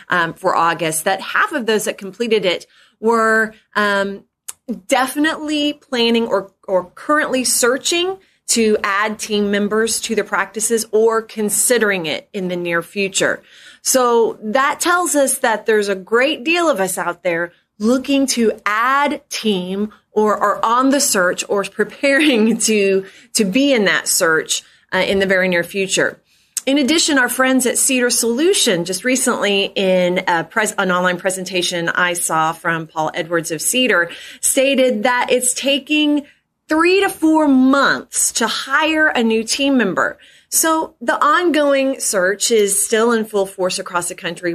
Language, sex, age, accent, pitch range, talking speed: English, female, 30-49, American, 190-260 Hz, 155 wpm